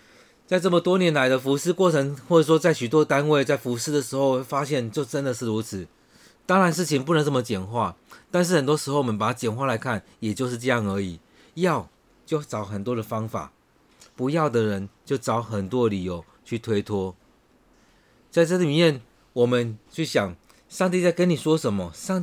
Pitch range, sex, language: 110-155 Hz, male, Chinese